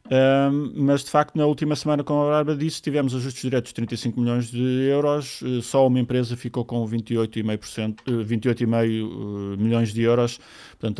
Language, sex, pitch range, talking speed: Portuguese, male, 105-135 Hz, 165 wpm